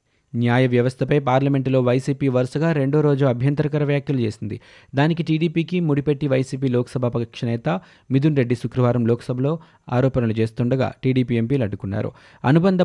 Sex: male